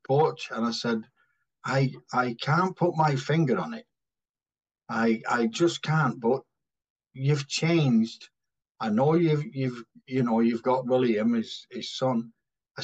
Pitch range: 115-150 Hz